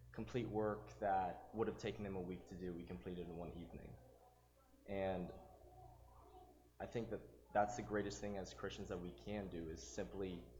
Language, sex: English, male